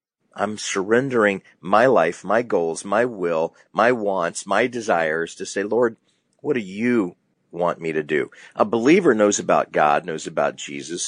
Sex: male